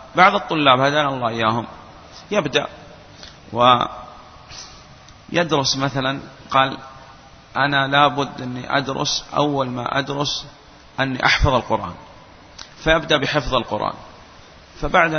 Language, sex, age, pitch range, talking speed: Arabic, male, 30-49, 115-145 Hz, 90 wpm